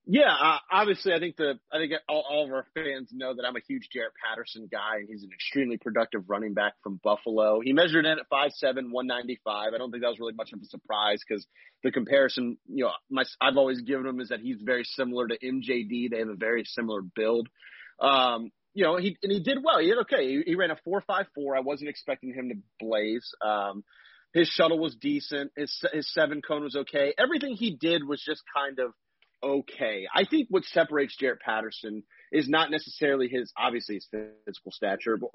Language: English